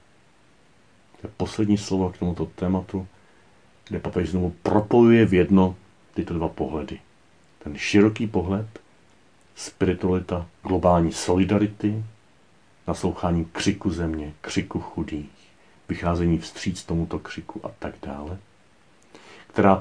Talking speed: 100 wpm